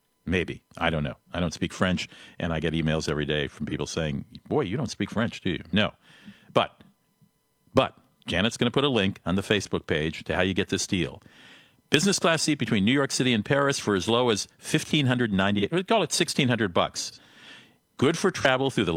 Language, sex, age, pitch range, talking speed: English, male, 50-69, 95-135 Hz, 215 wpm